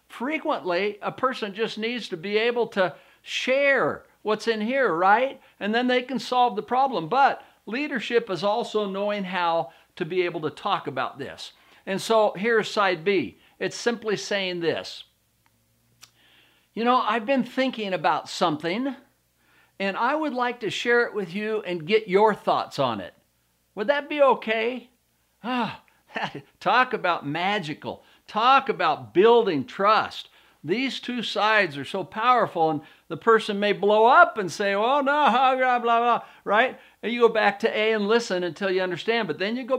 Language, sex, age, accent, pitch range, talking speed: English, male, 60-79, American, 195-255 Hz, 165 wpm